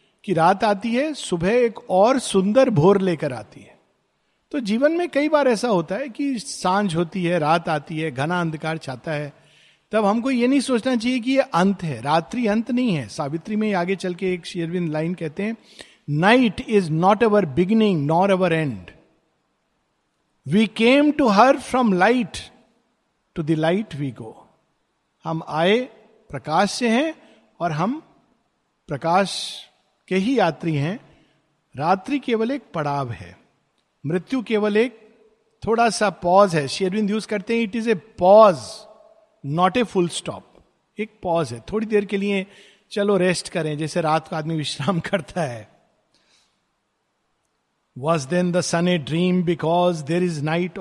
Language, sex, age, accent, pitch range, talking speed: Hindi, male, 50-69, native, 165-220 Hz, 160 wpm